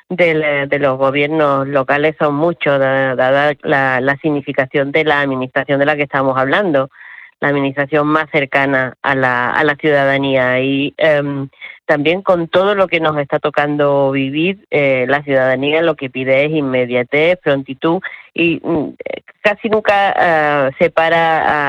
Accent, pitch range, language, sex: Argentinian, 135-155 Hz, Spanish, female